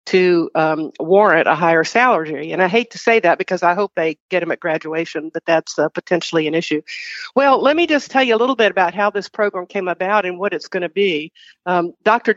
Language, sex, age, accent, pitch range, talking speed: English, female, 50-69, American, 175-220 Hz, 240 wpm